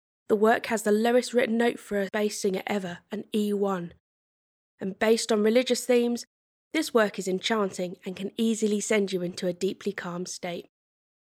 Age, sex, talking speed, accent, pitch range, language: 20-39, female, 175 wpm, British, 195-250 Hz, English